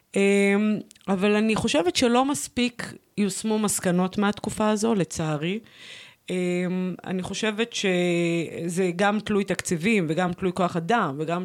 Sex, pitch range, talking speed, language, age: female, 175-220 Hz, 110 wpm, Hebrew, 30-49